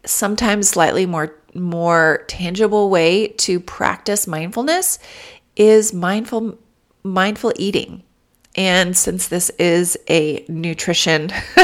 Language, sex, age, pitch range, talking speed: English, female, 30-49, 170-215 Hz, 100 wpm